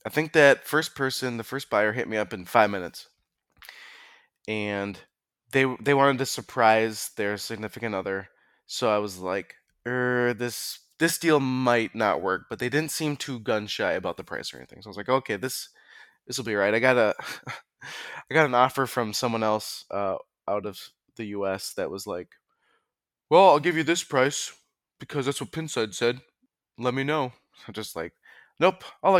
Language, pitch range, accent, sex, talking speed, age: English, 110-150 Hz, American, male, 190 wpm, 20-39